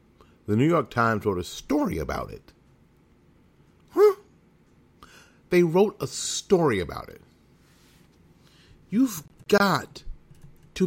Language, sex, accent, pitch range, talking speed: English, male, American, 85-140 Hz, 105 wpm